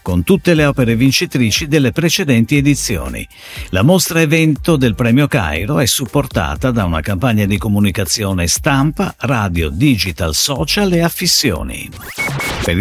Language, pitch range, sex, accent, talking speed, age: Italian, 95-150 Hz, male, native, 130 wpm, 50-69